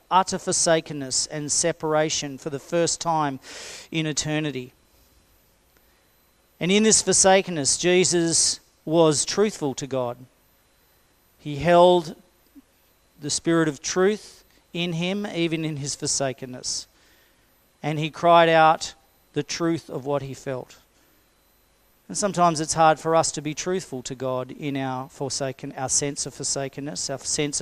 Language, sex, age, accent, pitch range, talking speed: English, male, 40-59, Australian, 130-170 Hz, 135 wpm